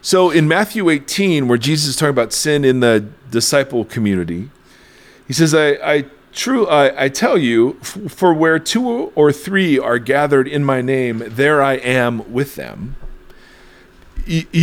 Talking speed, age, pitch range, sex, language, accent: 160 wpm, 40-59, 120-165 Hz, male, English, American